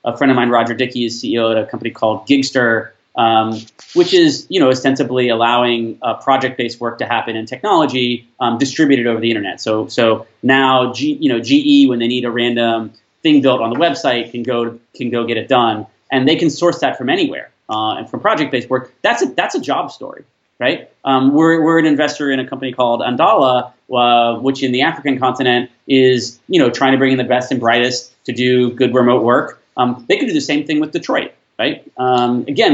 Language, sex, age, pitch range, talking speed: English, male, 30-49, 120-140 Hz, 220 wpm